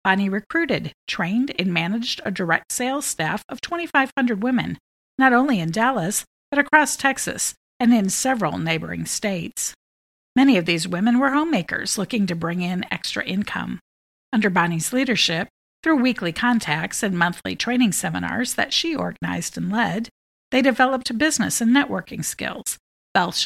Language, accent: English, American